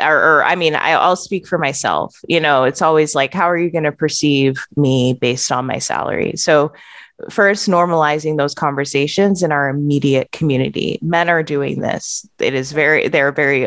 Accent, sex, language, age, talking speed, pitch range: American, female, English, 20-39, 190 wpm, 145-180 Hz